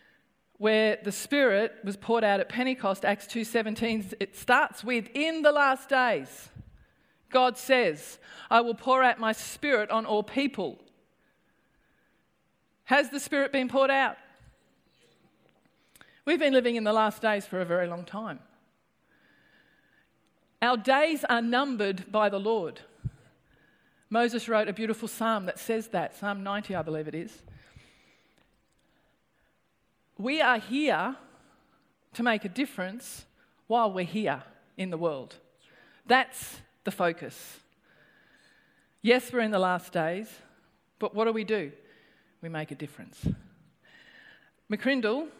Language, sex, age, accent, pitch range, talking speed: English, female, 40-59, Australian, 195-255 Hz, 130 wpm